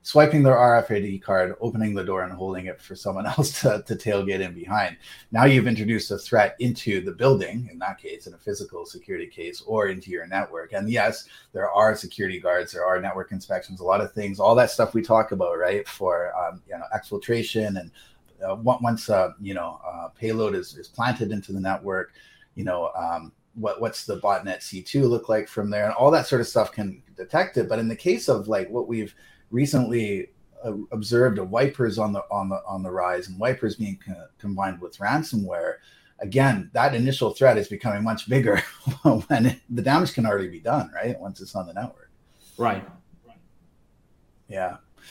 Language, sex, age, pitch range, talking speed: English, male, 30-49, 100-130 Hz, 200 wpm